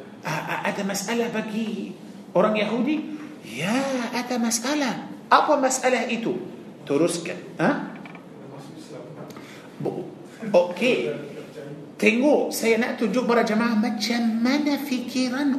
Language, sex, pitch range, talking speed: Malay, male, 210-250 Hz, 90 wpm